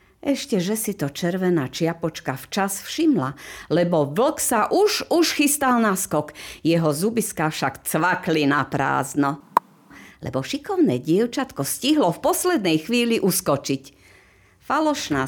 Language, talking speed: Slovak, 115 wpm